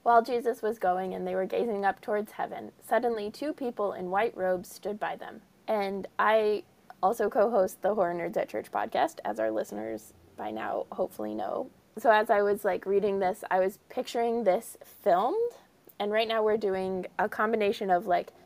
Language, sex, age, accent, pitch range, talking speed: English, female, 20-39, American, 185-220 Hz, 190 wpm